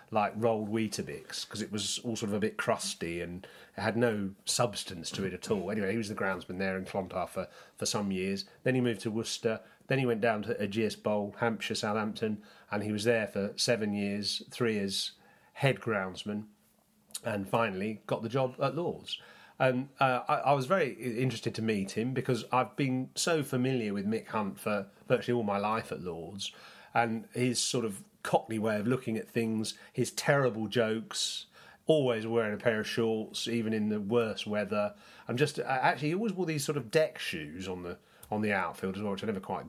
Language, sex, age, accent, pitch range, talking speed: English, male, 30-49, British, 105-130 Hz, 205 wpm